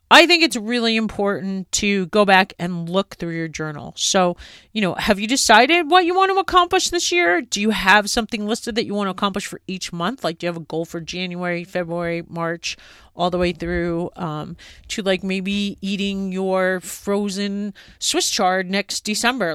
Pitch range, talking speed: 165-215 Hz, 195 wpm